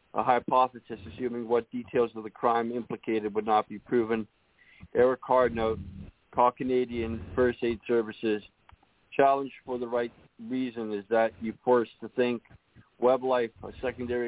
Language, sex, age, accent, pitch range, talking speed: English, male, 40-59, American, 110-125 Hz, 150 wpm